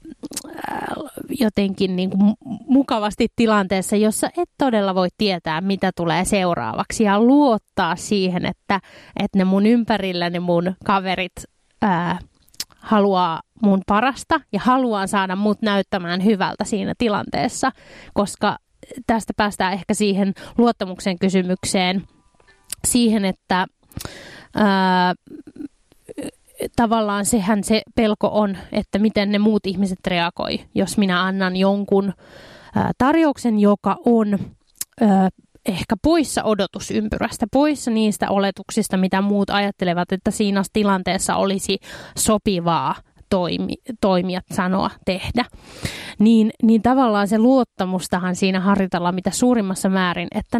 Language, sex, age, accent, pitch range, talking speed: Finnish, female, 20-39, native, 190-230 Hz, 110 wpm